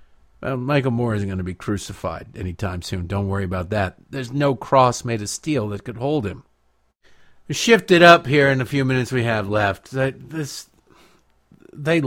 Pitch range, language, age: 95-150 Hz, English, 50-69